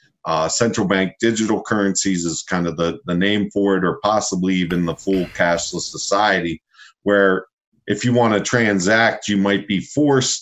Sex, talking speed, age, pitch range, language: male, 175 wpm, 40-59, 95-115 Hz, English